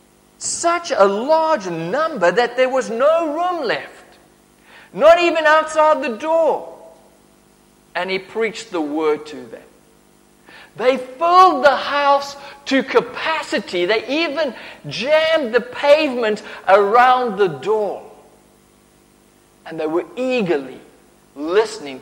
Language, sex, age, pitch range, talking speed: English, male, 50-69, 190-295 Hz, 110 wpm